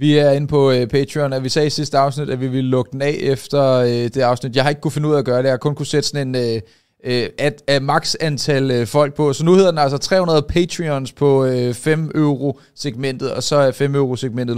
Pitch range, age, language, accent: 125-155 Hz, 30-49, Danish, native